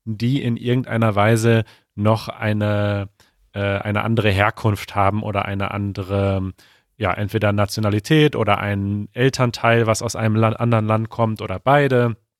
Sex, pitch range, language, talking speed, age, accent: male, 100-115 Hz, German, 140 wpm, 30-49, German